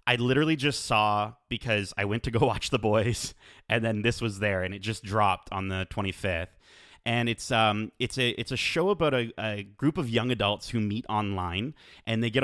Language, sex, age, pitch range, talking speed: English, male, 30-49, 100-125 Hz, 215 wpm